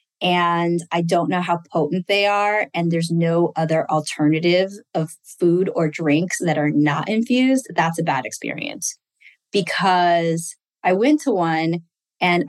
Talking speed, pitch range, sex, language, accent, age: 150 wpm, 170-215 Hz, female, English, American, 20-39